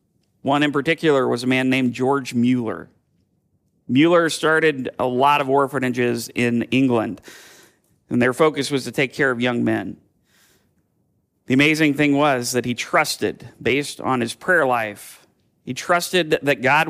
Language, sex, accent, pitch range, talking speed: English, male, American, 125-150 Hz, 155 wpm